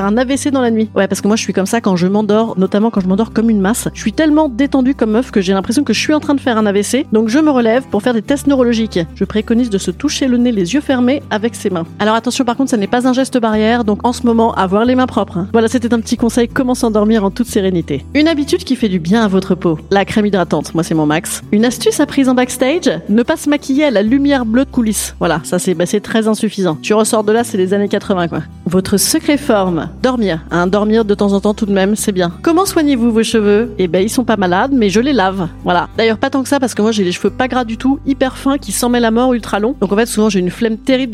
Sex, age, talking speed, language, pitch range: female, 30-49, 295 wpm, French, 200-260 Hz